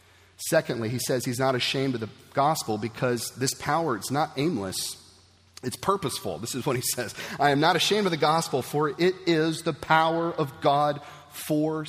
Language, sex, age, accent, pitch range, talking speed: English, male, 40-59, American, 95-145 Hz, 185 wpm